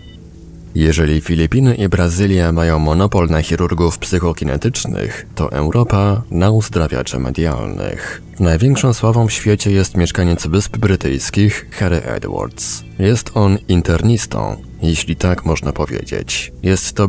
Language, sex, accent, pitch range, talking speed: Polish, male, native, 80-105 Hz, 115 wpm